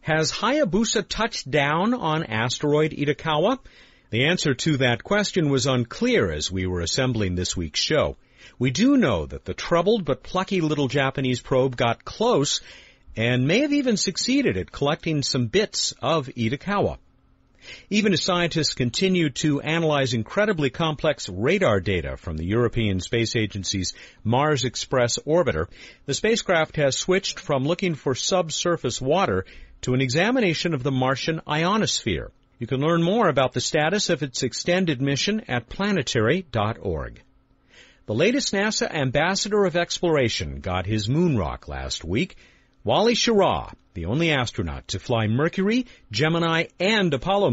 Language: English